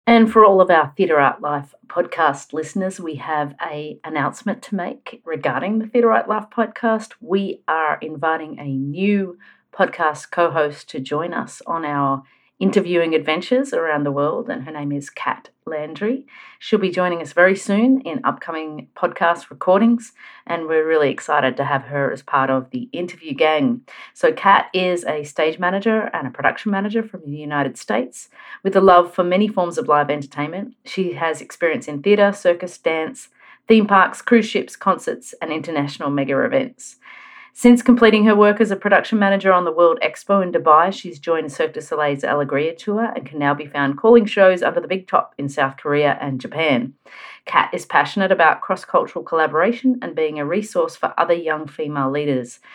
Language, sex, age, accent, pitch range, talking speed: English, female, 40-59, Australian, 155-215 Hz, 180 wpm